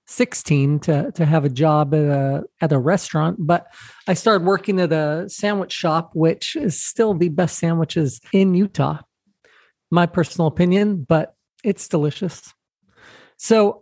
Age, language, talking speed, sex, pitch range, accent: 40-59, English, 150 wpm, male, 155-195 Hz, American